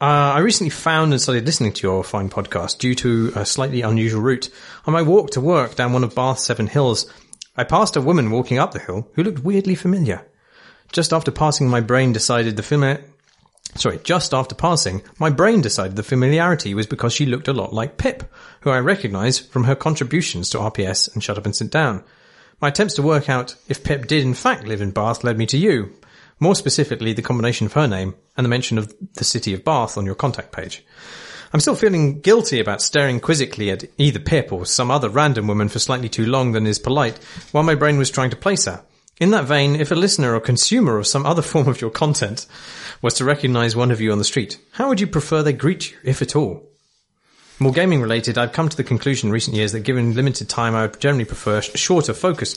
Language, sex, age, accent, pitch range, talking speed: English, male, 30-49, British, 110-150 Hz, 230 wpm